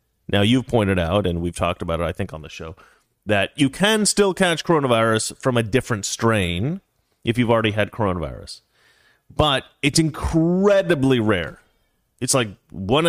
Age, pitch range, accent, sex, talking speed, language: 30-49, 100-135 Hz, American, male, 165 wpm, English